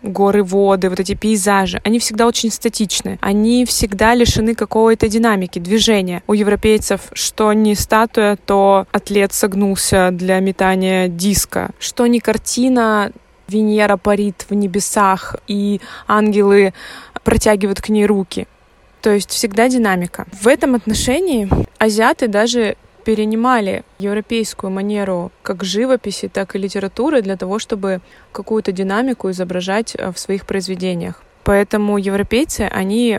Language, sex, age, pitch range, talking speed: Russian, female, 20-39, 195-225 Hz, 125 wpm